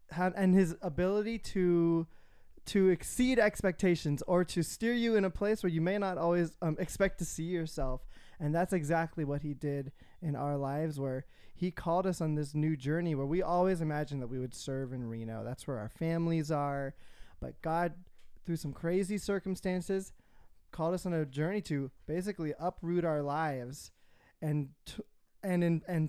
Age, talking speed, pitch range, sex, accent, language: 20-39, 175 wpm, 145-180 Hz, male, American, English